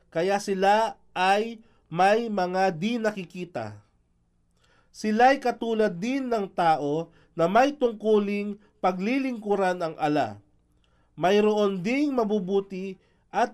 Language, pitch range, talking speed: Filipino, 155-220 Hz, 95 wpm